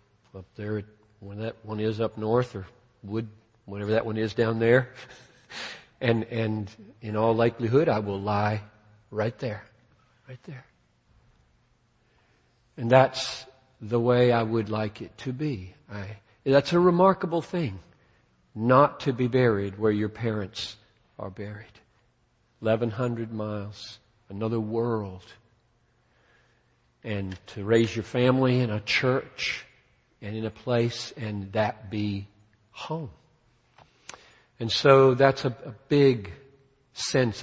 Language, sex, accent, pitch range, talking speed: English, male, American, 100-120 Hz, 125 wpm